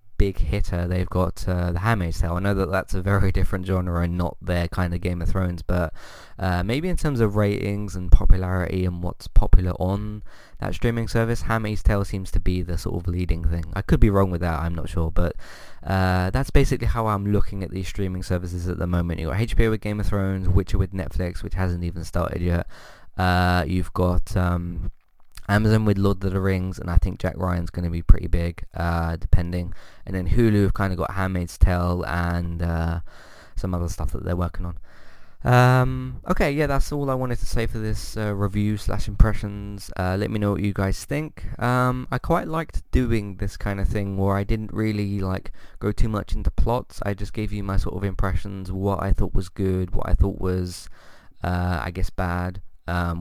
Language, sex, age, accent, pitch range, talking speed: English, male, 20-39, British, 90-100 Hz, 215 wpm